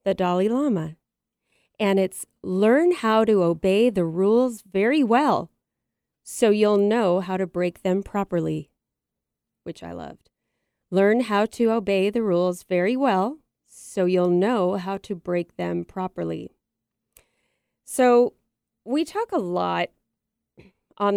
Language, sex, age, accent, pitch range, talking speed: English, female, 30-49, American, 180-220 Hz, 130 wpm